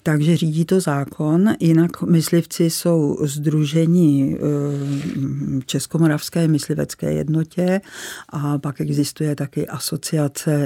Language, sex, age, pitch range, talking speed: Czech, female, 50-69, 145-160 Hz, 90 wpm